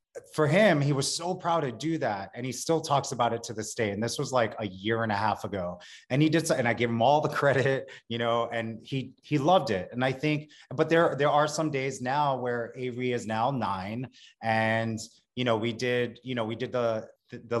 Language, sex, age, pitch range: English, male, 30-49, 110-135 Hz